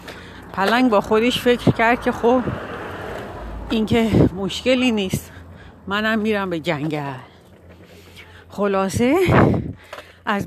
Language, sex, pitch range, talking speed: Persian, female, 185-260 Hz, 95 wpm